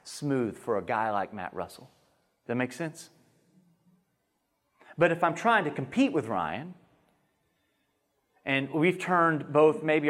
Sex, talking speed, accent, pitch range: male, 145 wpm, American, 145-195 Hz